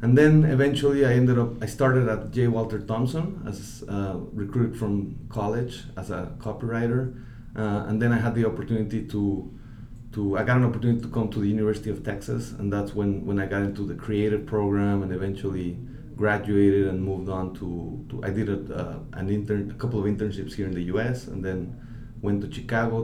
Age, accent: 30-49, Mexican